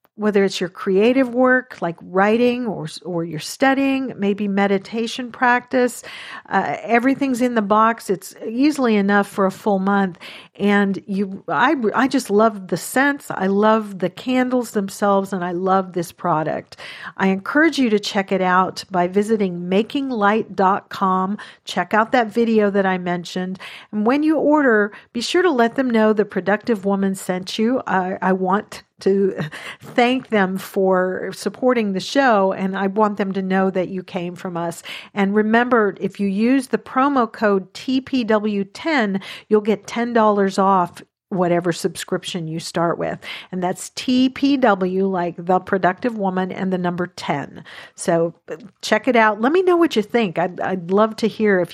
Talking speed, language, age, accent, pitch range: 165 wpm, English, 50-69, American, 185-230 Hz